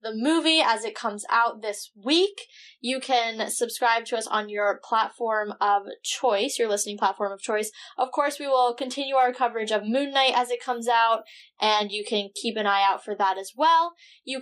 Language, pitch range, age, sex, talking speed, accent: English, 215-260 Hz, 10-29, female, 205 wpm, American